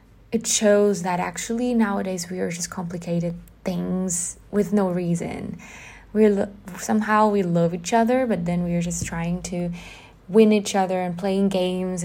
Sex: female